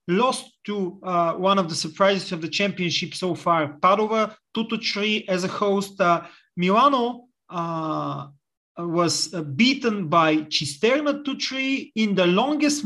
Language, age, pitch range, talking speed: English, 30-49, 165-220 Hz, 140 wpm